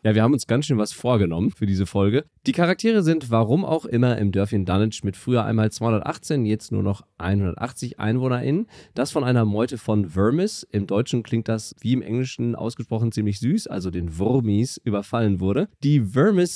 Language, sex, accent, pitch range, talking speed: German, male, German, 100-130 Hz, 190 wpm